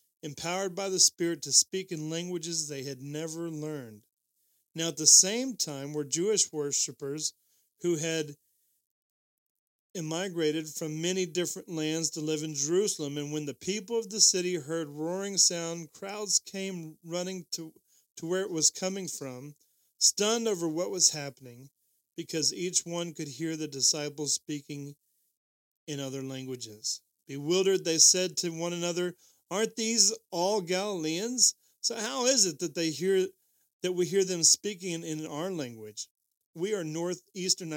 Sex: male